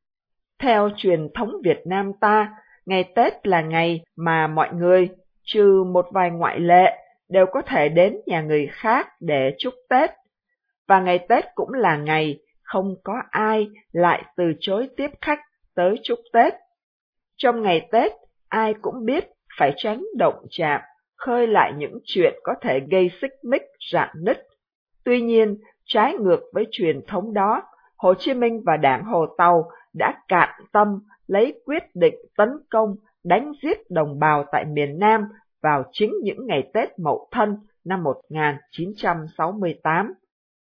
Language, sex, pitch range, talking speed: Vietnamese, female, 170-240 Hz, 155 wpm